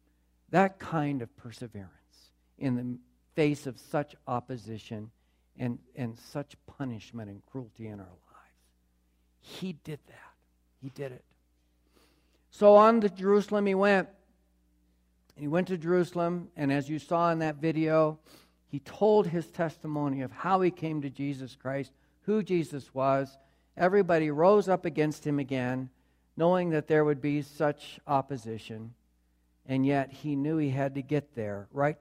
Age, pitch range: 60-79, 110-170 Hz